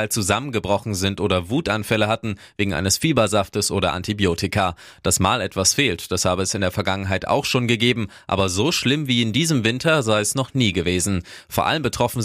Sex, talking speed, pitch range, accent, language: male, 185 wpm, 95-120 Hz, German, German